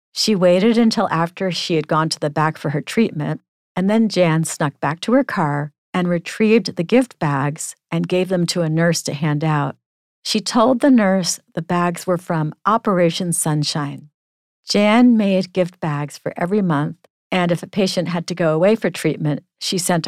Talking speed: 190 wpm